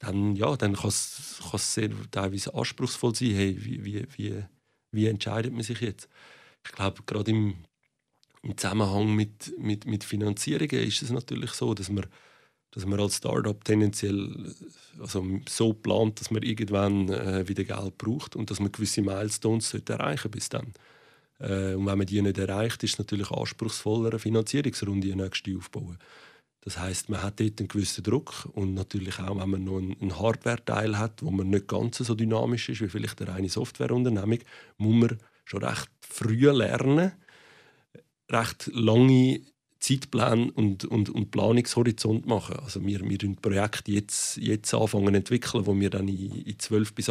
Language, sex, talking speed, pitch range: German, male, 170 wpm, 100-115 Hz